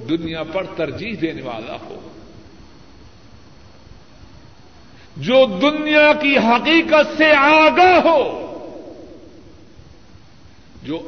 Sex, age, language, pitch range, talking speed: male, 50-69, Urdu, 165-270 Hz, 75 wpm